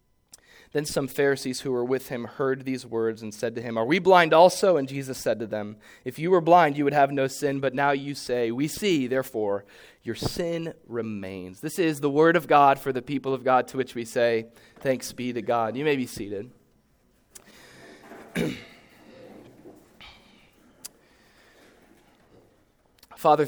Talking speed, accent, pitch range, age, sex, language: 170 wpm, American, 115-140 Hz, 20-39, male, English